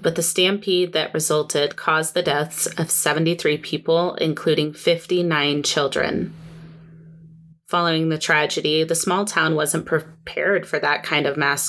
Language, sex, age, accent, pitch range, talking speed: English, female, 30-49, American, 155-165 Hz, 140 wpm